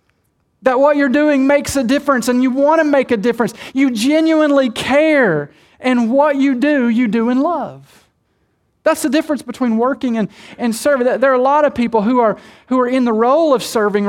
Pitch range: 210-265 Hz